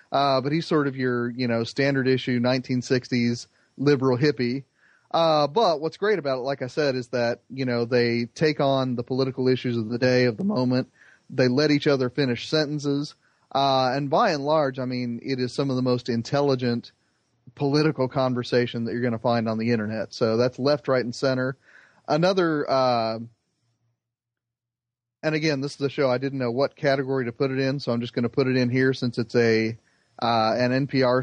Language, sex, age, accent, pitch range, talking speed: English, male, 30-49, American, 120-140 Hz, 210 wpm